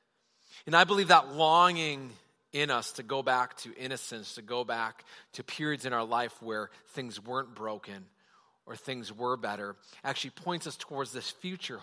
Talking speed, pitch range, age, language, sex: 170 wpm, 125-170 Hz, 40-59, English, male